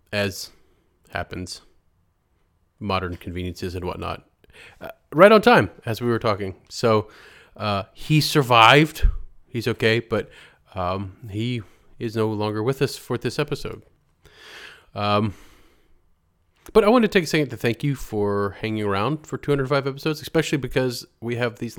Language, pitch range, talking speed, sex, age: English, 95-120 Hz, 145 wpm, male, 30-49